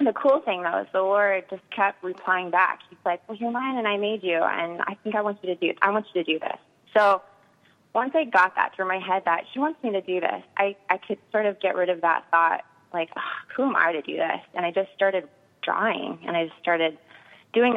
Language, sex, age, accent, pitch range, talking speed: English, female, 20-39, American, 165-210 Hz, 260 wpm